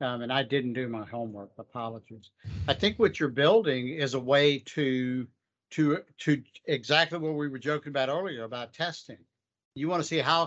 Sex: male